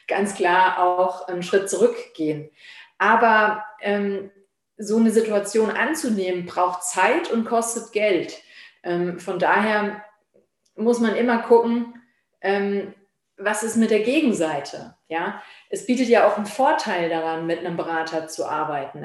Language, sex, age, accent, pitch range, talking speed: German, female, 30-49, German, 185-235 Hz, 135 wpm